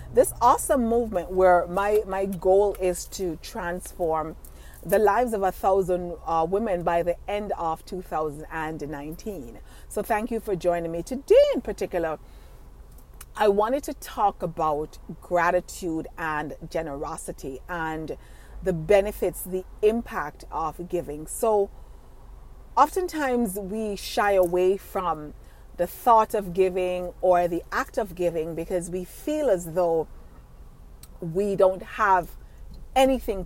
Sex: female